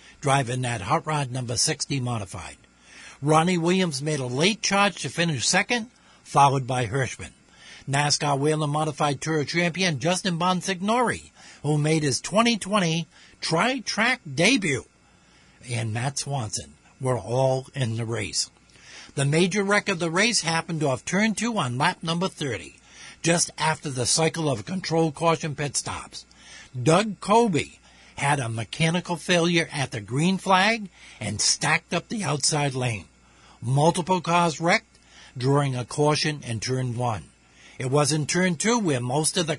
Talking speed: 145 wpm